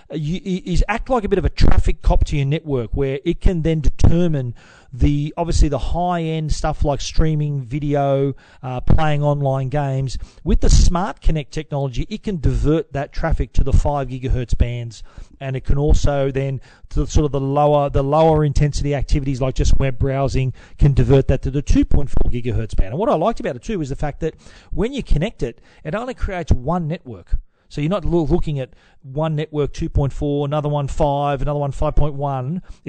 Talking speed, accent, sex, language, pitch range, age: 190 wpm, Australian, male, English, 135-160 Hz, 40-59